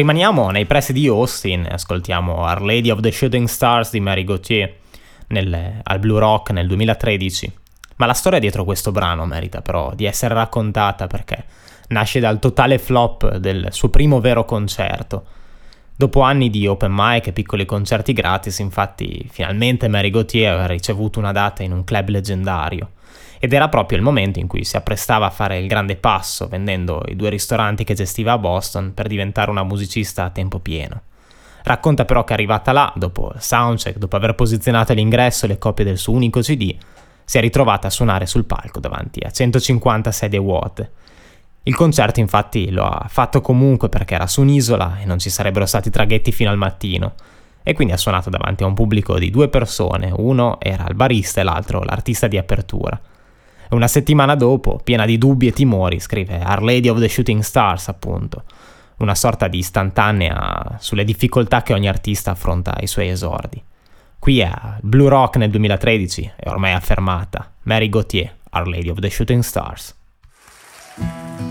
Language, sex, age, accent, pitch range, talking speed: Italian, male, 20-39, native, 95-120 Hz, 175 wpm